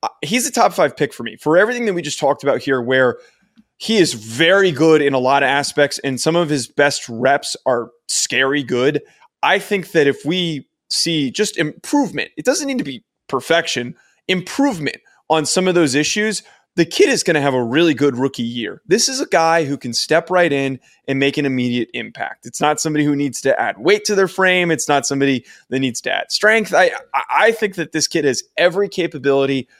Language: English